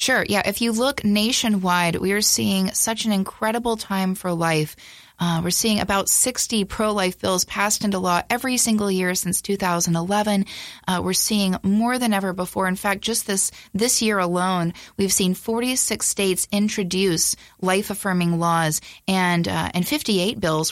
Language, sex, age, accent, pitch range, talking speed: English, female, 30-49, American, 175-210 Hz, 165 wpm